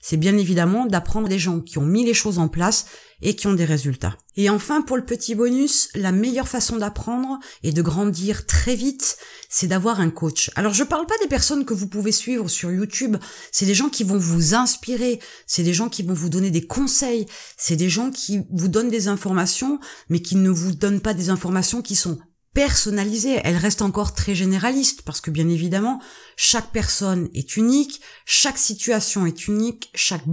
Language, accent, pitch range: French, French, 175-235 Hz